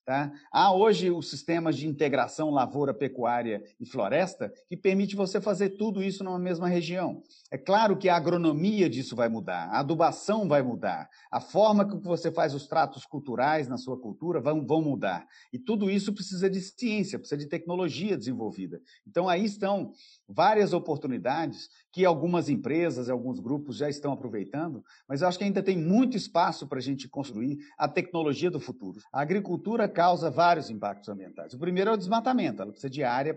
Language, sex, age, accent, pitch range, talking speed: Portuguese, male, 50-69, Brazilian, 140-190 Hz, 175 wpm